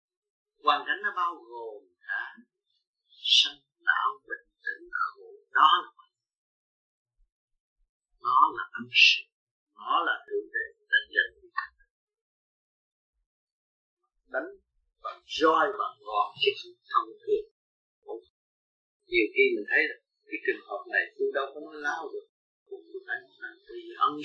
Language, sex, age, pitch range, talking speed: Vietnamese, male, 50-69, 360-425 Hz, 125 wpm